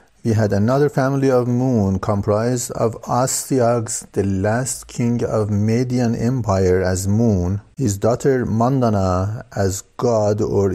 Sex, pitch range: male, 100-120 Hz